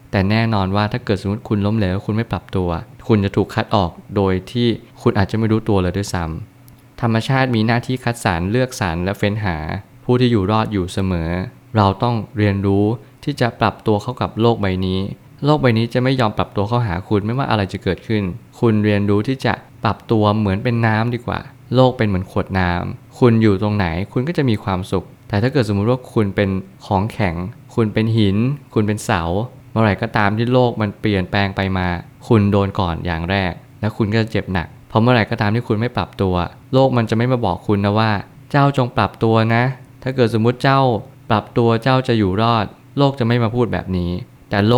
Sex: male